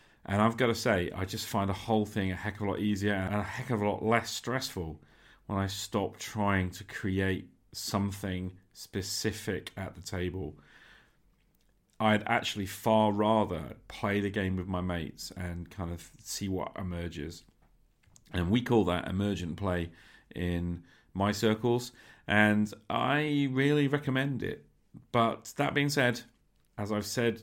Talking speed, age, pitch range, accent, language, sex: 160 wpm, 40-59, 90-115 Hz, British, English, male